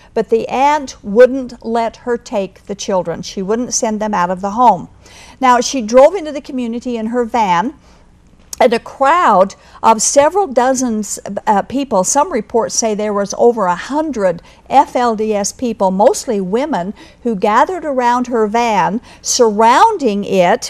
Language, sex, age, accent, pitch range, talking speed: English, female, 50-69, American, 210-255 Hz, 150 wpm